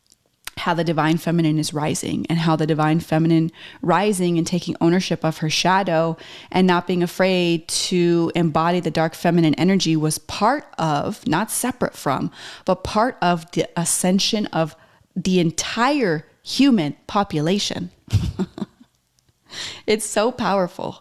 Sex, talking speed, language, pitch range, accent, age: female, 135 wpm, English, 160-195 Hz, American, 20-39